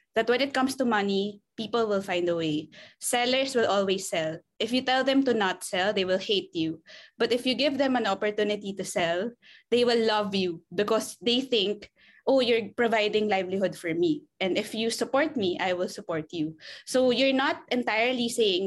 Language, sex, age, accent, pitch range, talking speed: English, female, 20-39, Filipino, 195-245 Hz, 200 wpm